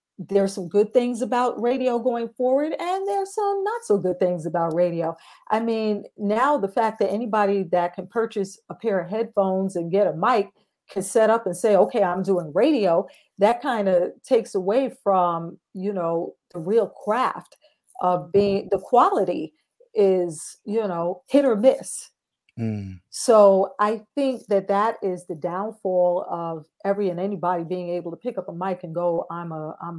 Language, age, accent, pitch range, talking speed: English, 40-59, American, 175-215 Hz, 180 wpm